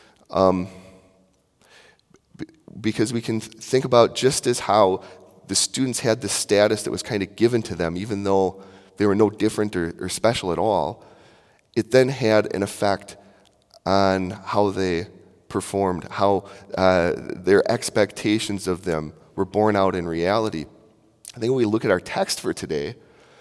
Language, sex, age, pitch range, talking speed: English, male, 30-49, 95-115 Hz, 160 wpm